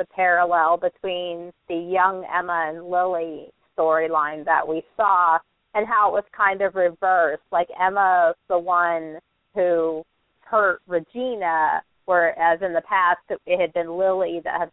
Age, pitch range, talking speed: 30-49, 170-195 Hz, 145 wpm